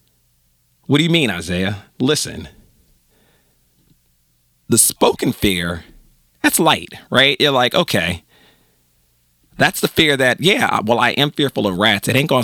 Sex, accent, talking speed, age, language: male, American, 140 wpm, 40-59, English